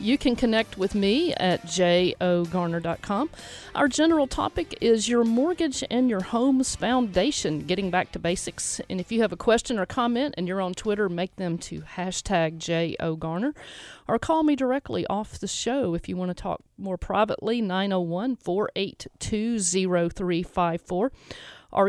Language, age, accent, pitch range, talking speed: English, 40-59, American, 175-230 Hz, 150 wpm